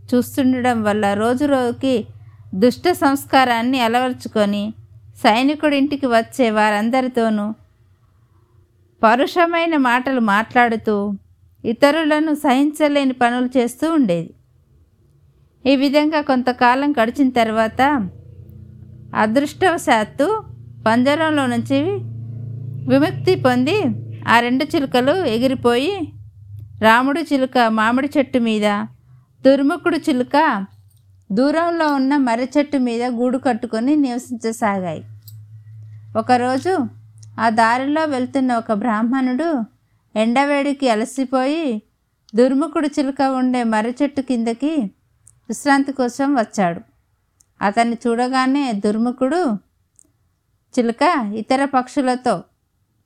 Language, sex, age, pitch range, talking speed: Telugu, female, 50-69, 205-275 Hz, 75 wpm